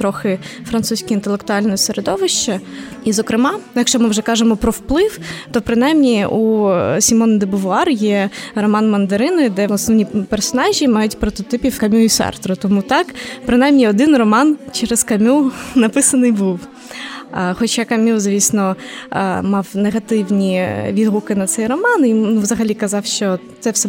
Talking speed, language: 135 wpm, Ukrainian